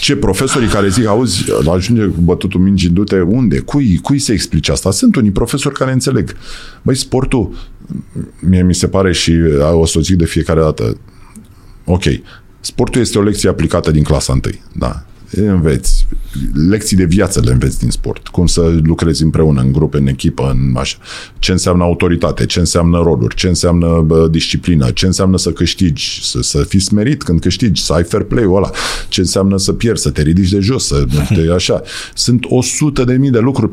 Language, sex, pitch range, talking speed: Romanian, male, 80-110 Hz, 190 wpm